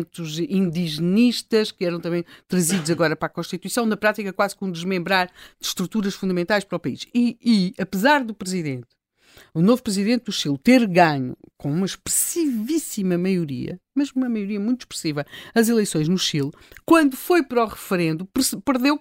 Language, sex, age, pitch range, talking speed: Portuguese, female, 50-69, 190-275 Hz, 160 wpm